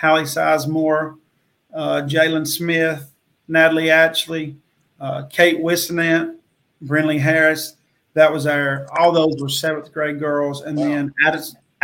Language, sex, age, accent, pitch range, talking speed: English, male, 40-59, American, 140-155 Hz, 115 wpm